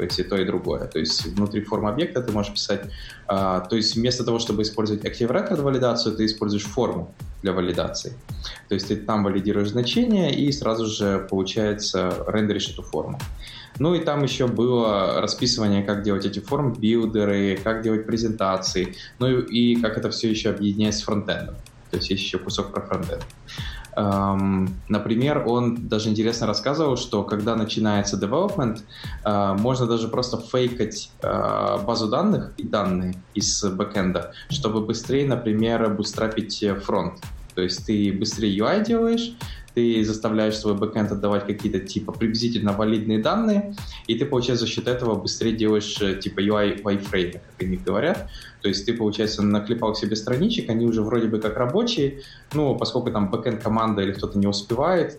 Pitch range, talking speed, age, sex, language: 100-120 Hz, 160 wpm, 20-39, male, Russian